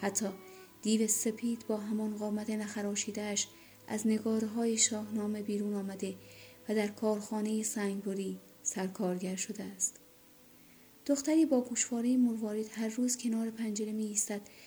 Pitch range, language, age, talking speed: 200-220 Hz, Persian, 30-49, 125 wpm